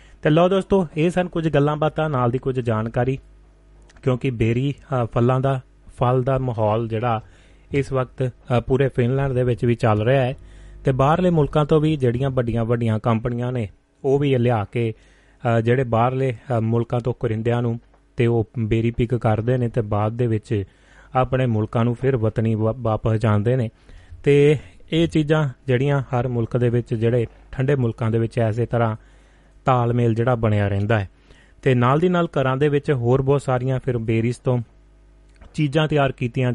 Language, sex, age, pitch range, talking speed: Punjabi, male, 30-49, 110-130 Hz, 140 wpm